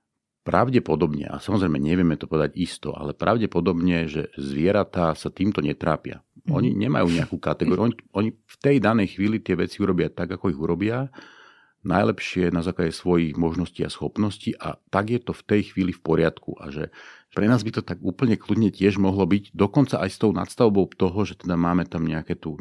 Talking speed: 185 wpm